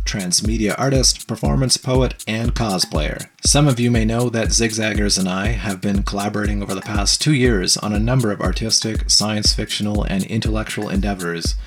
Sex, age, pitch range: male, 30-49, 100-120 Hz